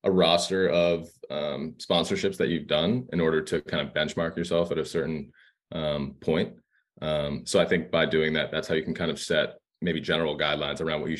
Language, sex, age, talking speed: English, male, 20-39, 215 wpm